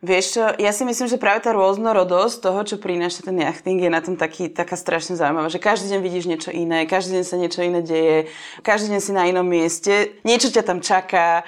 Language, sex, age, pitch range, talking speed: Slovak, female, 20-39, 180-215 Hz, 225 wpm